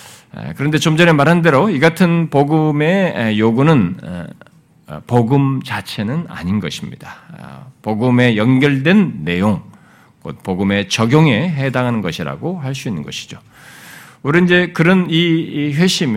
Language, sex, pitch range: Korean, male, 100-155 Hz